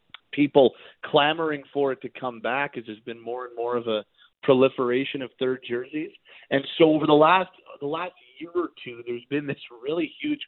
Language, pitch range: English, 135-160 Hz